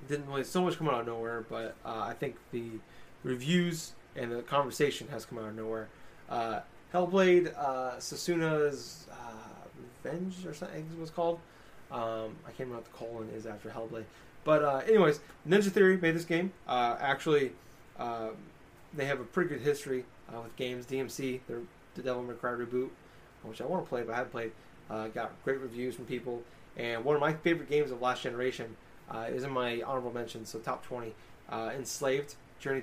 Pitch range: 115-150 Hz